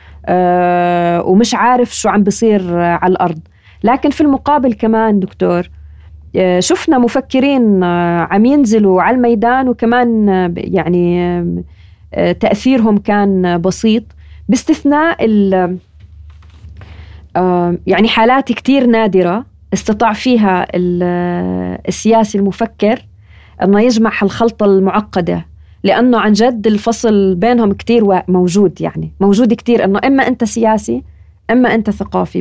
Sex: female